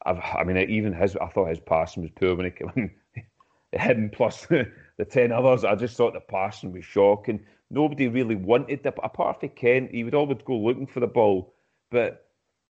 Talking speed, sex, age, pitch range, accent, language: 195 wpm, male, 40-59, 100-125 Hz, British, English